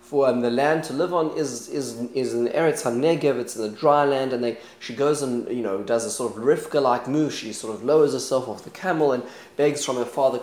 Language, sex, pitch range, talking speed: English, male, 120-145 Hz, 255 wpm